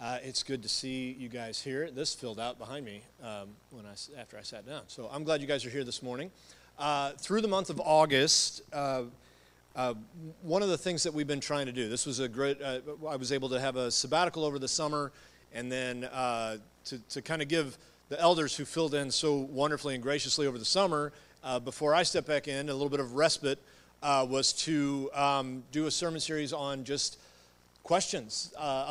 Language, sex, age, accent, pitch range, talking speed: English, male, 40-59, American, 125-155 Hz, 220 wpm